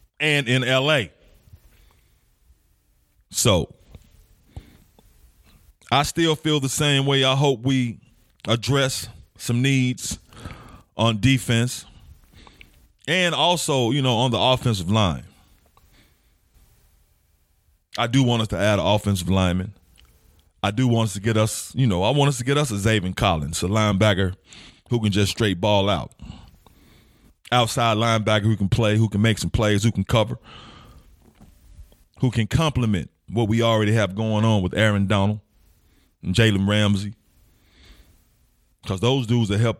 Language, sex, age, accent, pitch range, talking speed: English, male, 30-49, American, 90-125 Hz, 140 wpm